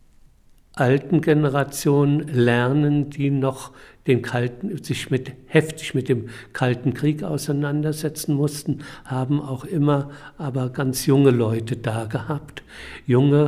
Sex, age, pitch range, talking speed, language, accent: male, 60-79, 125-150 Hz, 115 wpm, German, German